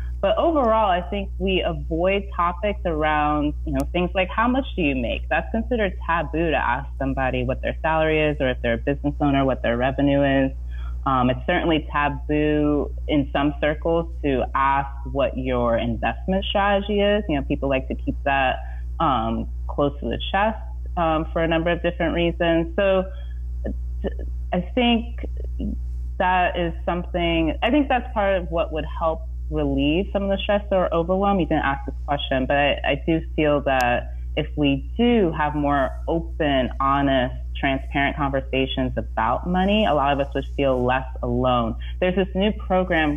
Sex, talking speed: female, 175 wpm